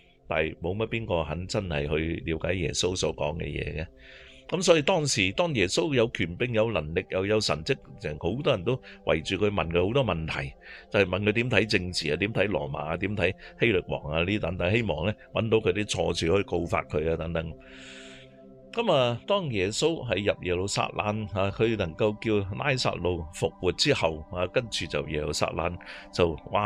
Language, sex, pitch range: Chinese, male, 75-105 Hz